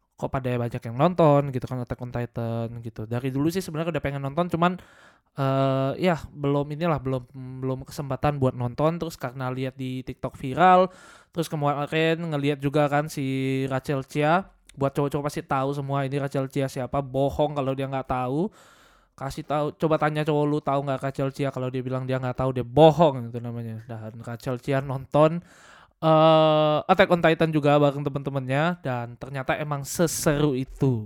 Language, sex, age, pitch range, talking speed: Indonesian, male, 20-39, 135-170 Hz, 180 wpm